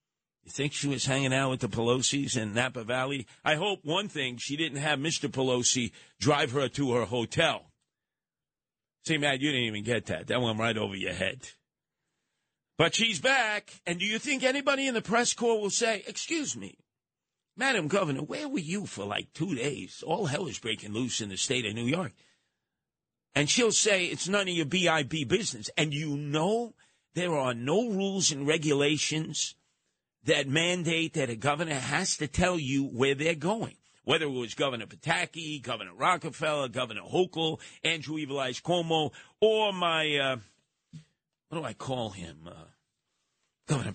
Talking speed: 175 wpm